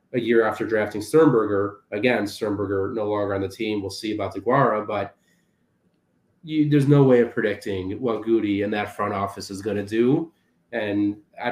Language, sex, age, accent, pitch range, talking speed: English, male, 30-49, American, 100-115 Hz, 190 wpm